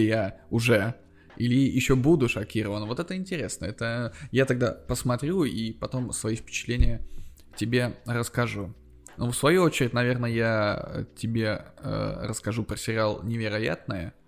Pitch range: 105-120 Hz